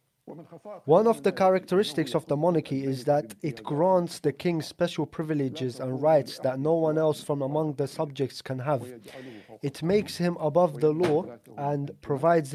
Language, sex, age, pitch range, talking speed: English, male, 20-39, 145-175 Hz, 165 wpm